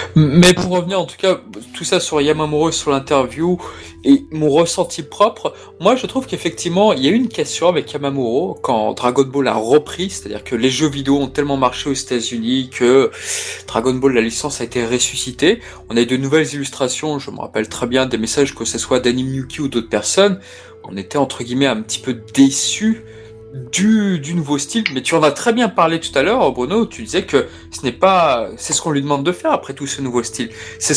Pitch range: 130-190 Hz